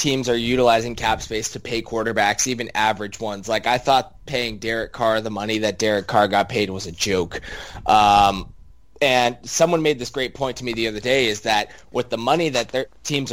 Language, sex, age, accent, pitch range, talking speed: English, male, 20-39, American, 105-120 Hz, 210 wpm